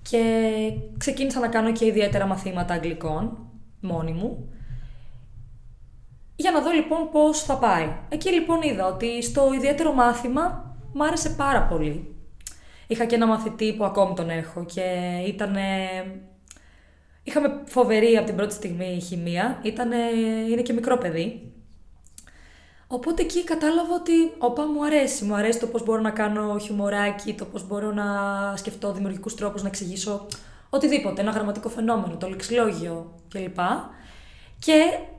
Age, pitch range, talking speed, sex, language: 20-39, 180-250 Hz, 140 wpm, female, Greek